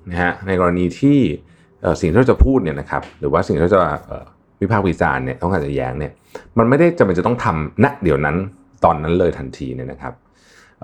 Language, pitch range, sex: Thai, 75-110 Hz, male